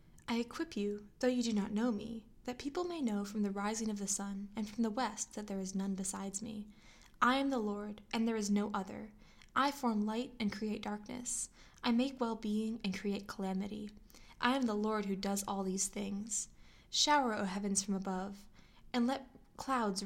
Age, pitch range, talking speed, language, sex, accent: 10-29, 200-240 Hz, 200 wpm, English, female, American